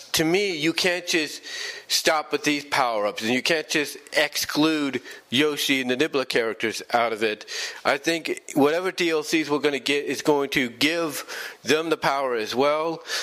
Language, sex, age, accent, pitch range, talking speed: English, male, 40-59, American, 130-165 Hz, 175 wpm